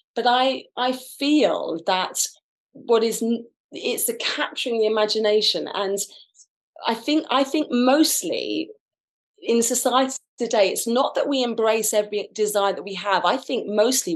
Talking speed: 145 wpm